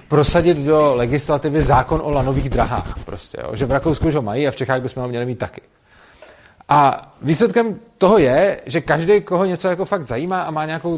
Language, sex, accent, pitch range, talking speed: Czech, male, native, 125-155 Hz, 200 wpm